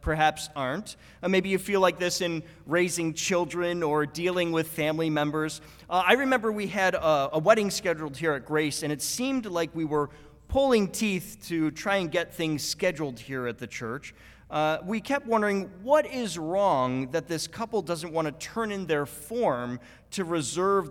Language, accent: English, American